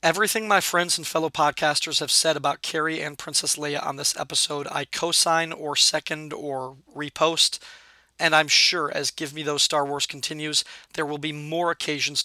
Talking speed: 180 wpm